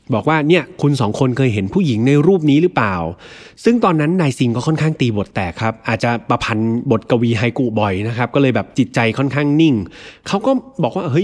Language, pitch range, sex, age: Thai, 115-165 Hz, male, 20-39